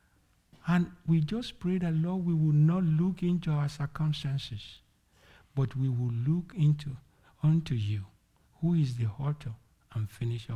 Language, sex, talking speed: English, male, 140 wpm